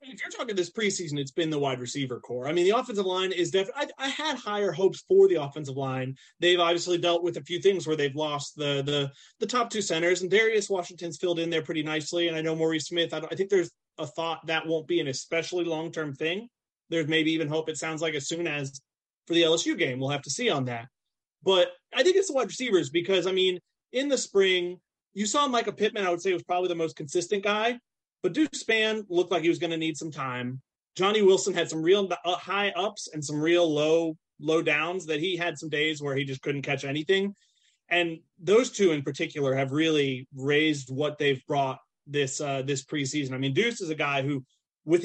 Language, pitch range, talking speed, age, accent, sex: English, 150-185 Hz, 230 wpm, 30-49, American, male